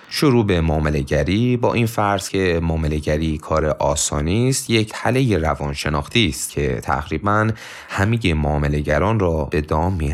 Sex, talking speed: male, 135 wpm